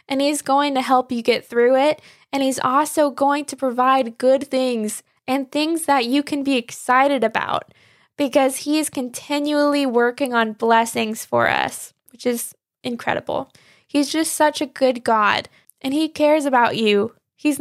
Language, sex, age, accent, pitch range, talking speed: English, female, 10-29, American, 240-285 Hz, 165 wpm